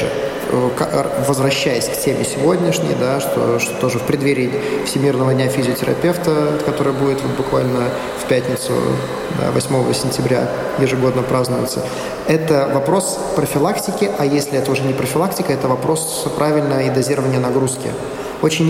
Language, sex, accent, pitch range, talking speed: Russian, male, native, 135-165 Hz, 115 wpm